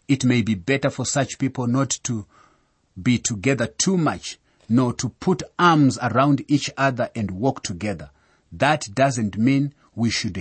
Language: English